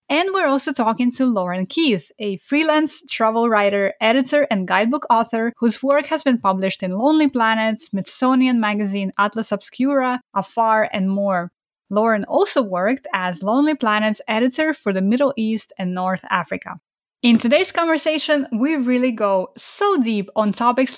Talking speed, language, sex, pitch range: 155 wpm, English, female, 200-270 Hz